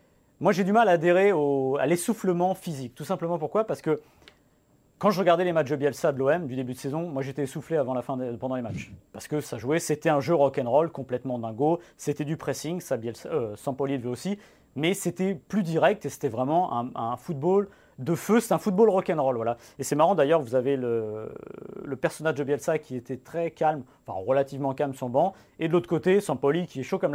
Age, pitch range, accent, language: 40-59, 135-180 Hz, French, French